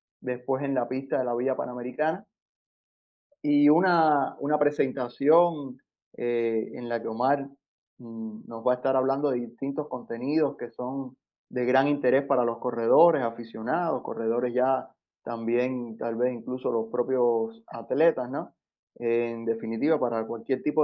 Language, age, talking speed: Spanish, 20-39, 145 wpm